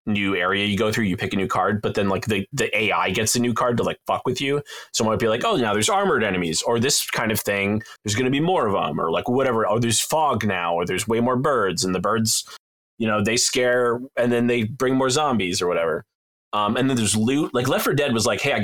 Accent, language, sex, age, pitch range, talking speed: American, English, male, 20-39, 105-135 Hz, 280 wpm